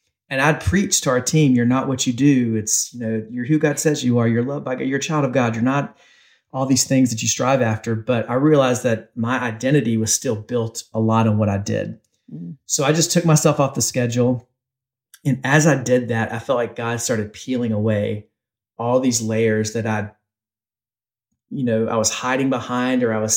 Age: 30-49